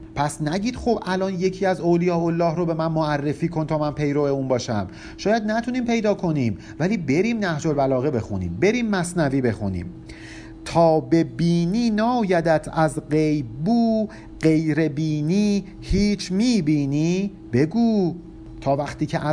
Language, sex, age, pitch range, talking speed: Persian, male, 50-69, 135-180 Hz, 140 wpm